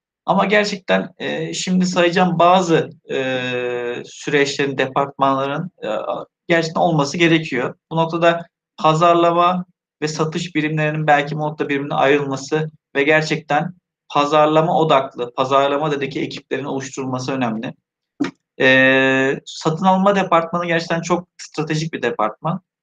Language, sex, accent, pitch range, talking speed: Turkish, male, native, 135-160 Hz, 110 wpm